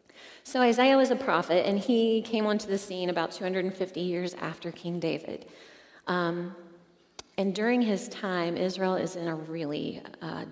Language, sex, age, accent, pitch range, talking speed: English, female, 30-49, American, 170-195 Hz, 160 wpm